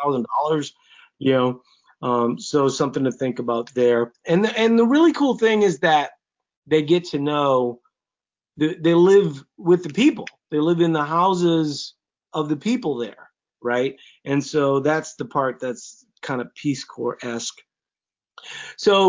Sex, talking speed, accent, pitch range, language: male, 160 wpm, American, 150-200 Hz, English